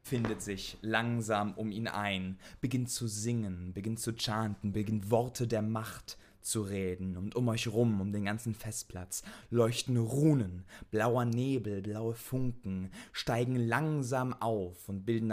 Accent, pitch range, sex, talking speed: German, 90-110 Hz, male, 145 wpm